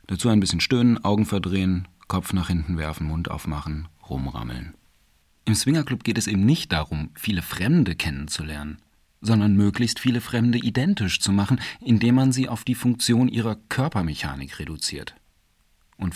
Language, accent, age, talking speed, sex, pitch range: German, German, 40-59, 150 wpm, male, 80-115 Hz